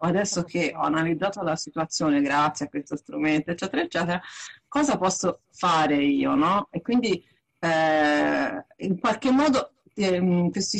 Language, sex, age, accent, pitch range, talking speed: Italian, female, 40-59, native, 155-195 Hz, 135 wpm